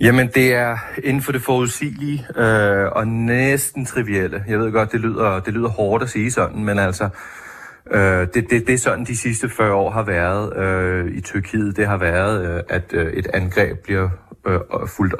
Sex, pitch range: male, 95-115 Hz